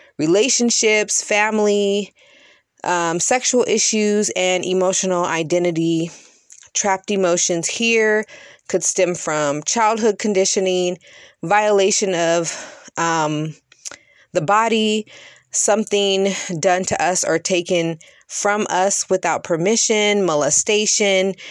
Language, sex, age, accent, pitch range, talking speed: English, female, 20-39, American, 170-215 Hz, 90 wpm